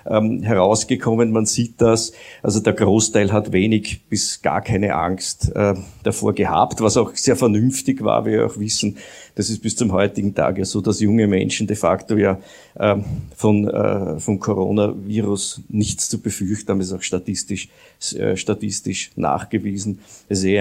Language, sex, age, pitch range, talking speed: German, male, 50-69, 105-130 Hz, 170 wpm